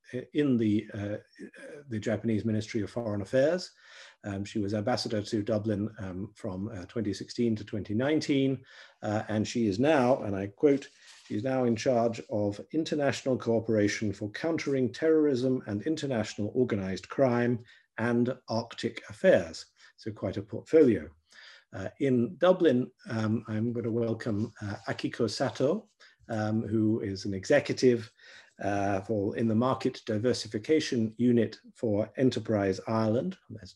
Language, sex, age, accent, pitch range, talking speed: English, male, 50-69, British, 105-125 Hz, 135 wpm